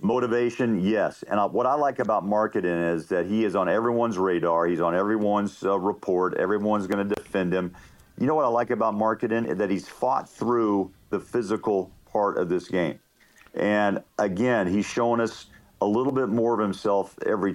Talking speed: 185 wpm